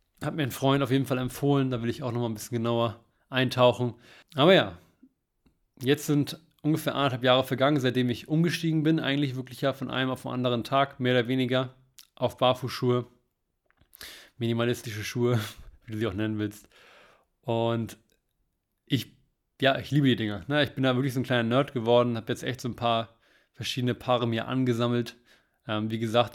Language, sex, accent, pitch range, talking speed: German, male, German, 110-130 Hz, 180 wpm